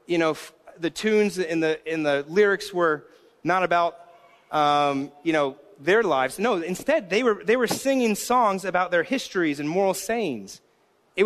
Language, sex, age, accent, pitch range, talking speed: English, male, 30-49, American, 170-210 Hz, 170 wpm